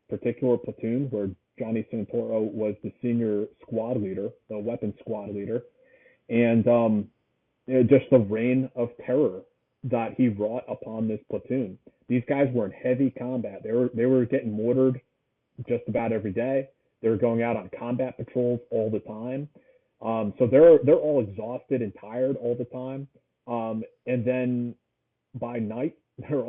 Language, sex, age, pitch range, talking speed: English, male, 30-49, 110-130 Hz, 155 wpm